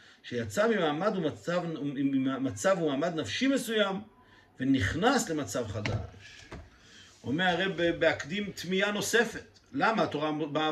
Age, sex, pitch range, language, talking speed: 50-69, male, 155-220 Hz, Hebrew, 100 wpm